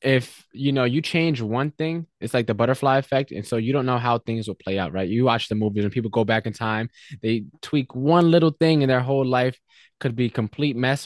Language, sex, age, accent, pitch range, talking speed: English, male, 20-39, American, 110-140 Hz, 250 wpm